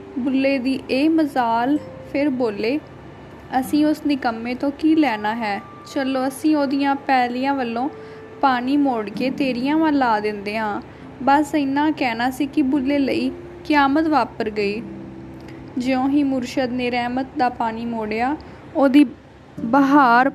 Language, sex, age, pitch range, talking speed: Punjabi, female, 10-29, 235-280 Hz, 135 wpm